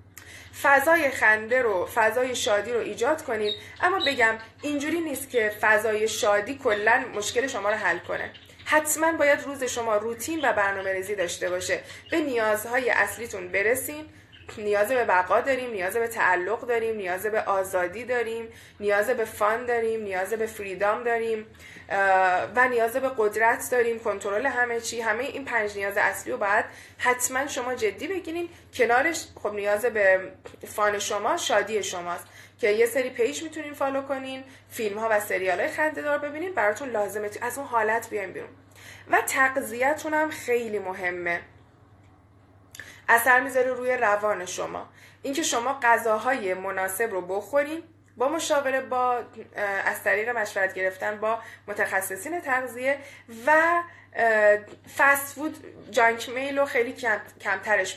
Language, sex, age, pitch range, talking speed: Persian, female, 20-39, 205-270 Hz, 135 wpm